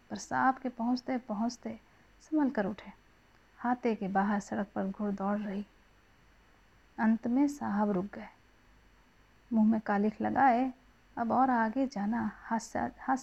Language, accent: Hindi, native